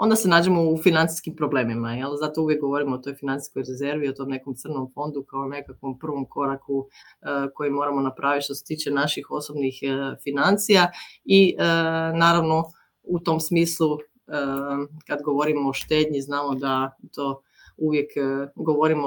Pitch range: 140-160 Hz